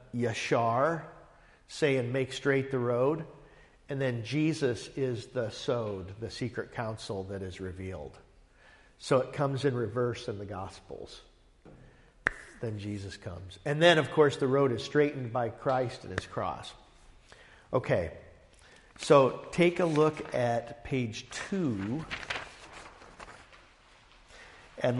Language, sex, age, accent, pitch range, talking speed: English, male, 50-69, American, 120-145 Hz, 120 wpm